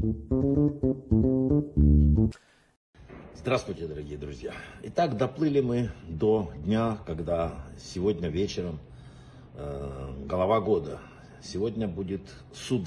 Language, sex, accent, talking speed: Russian, male, native, 80 wpm